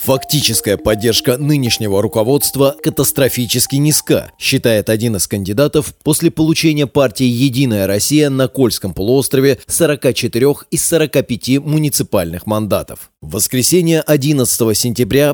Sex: male